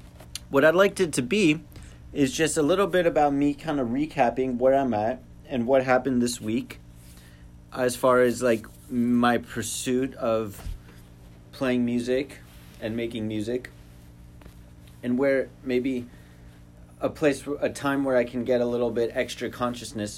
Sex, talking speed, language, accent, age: male, 155 wpm, English, American, 30-49